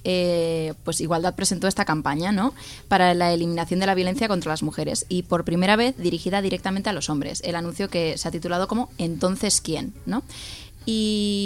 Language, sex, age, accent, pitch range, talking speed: Spanish, female, 20-39, Spanish, 165-195 Hz, 190 wpm